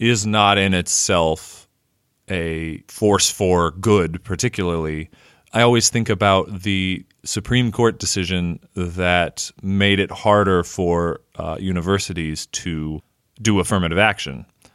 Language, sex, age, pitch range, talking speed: English, male, 30-49, 85-105 Hz, 115 wpm